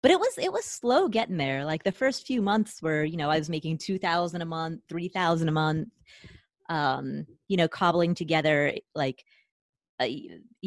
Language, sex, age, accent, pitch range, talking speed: English, female, 20-39, American, 155-205 Hz, 180 wpm